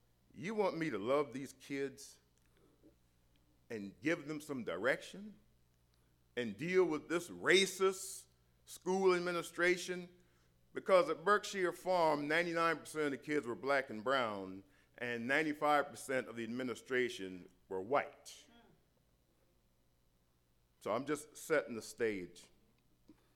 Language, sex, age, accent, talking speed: English, male, 50-69, American, 115 wpm